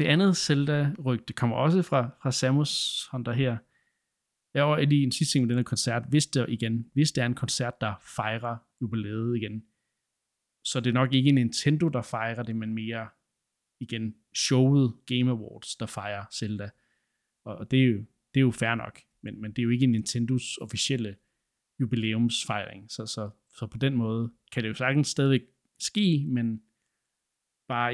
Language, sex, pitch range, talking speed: Danish, male, 110-135 Hz, 165 wpm